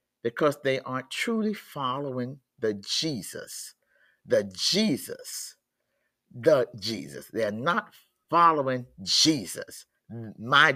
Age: 50-69